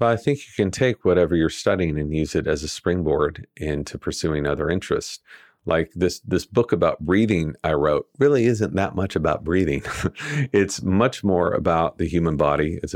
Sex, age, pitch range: male, 40-59, 75-100 Hz